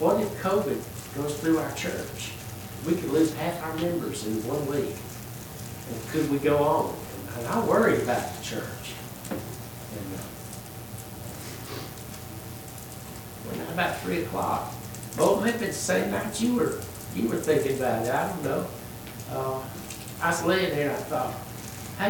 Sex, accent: male, American